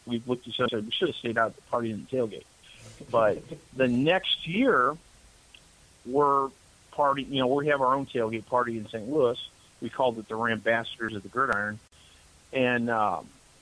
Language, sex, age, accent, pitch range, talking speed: English, male, 50-69, American, 115-135 Hz, 190 wpm